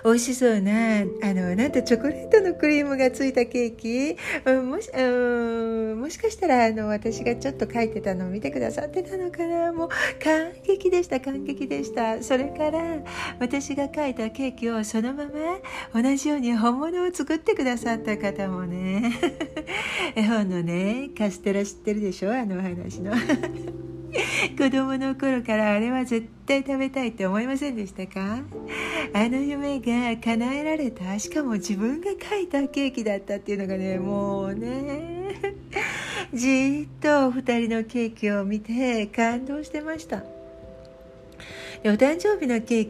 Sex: female